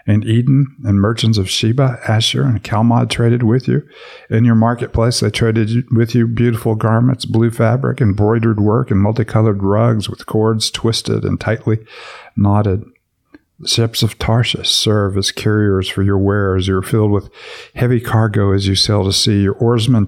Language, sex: English, male